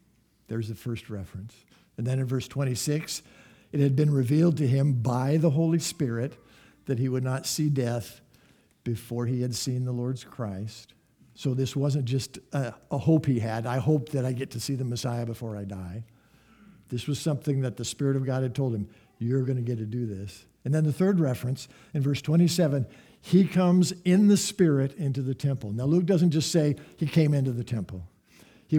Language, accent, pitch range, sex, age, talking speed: English, American, 120-150 Hz, male, 60-79, 205 wpm